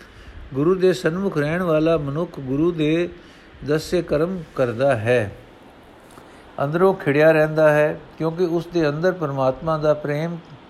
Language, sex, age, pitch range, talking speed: Punjabi, male, 60-79, 130-170 Hz, 130 wpm